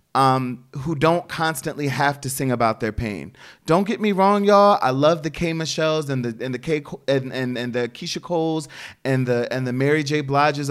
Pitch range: 140-195 Hz